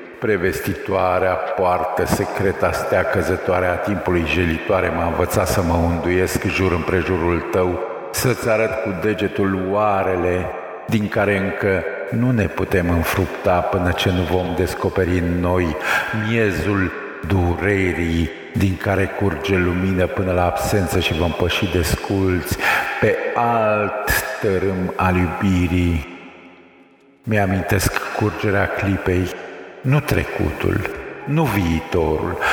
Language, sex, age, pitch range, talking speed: Romanian, male, 50-69, 90-105 Hz, 110 wpm